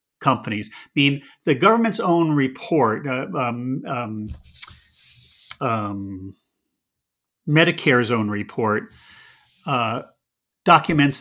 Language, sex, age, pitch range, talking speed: English, male, 50-69, 115-165 Hz, 85 wpm